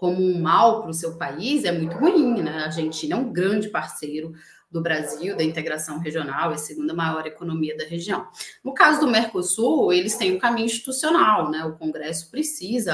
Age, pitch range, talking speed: 30-49, 160-225 Hz, 200 wpm